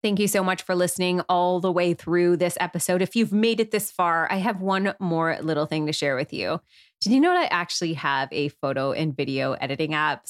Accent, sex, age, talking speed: American, female, 20-39, 240 wpm